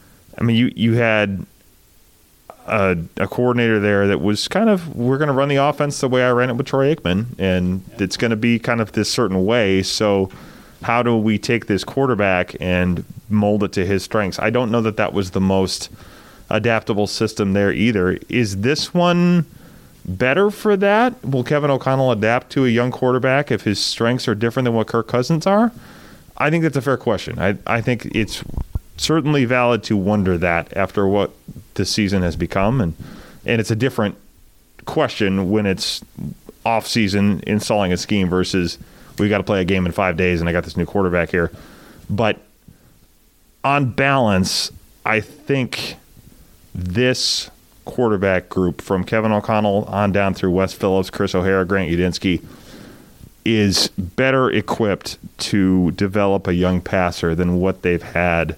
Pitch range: 95-125 Hz